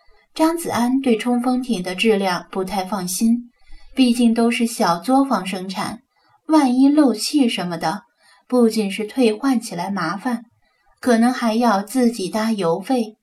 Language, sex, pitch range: Chinese, female, 205-260 Hz